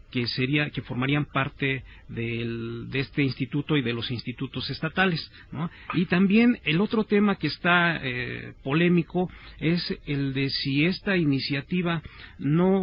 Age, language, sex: 40-59, Spanish, male